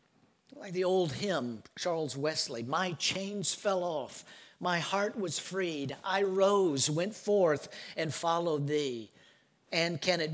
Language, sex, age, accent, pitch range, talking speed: English, male, 50-69, American, 140-190 Hz, 140 wpm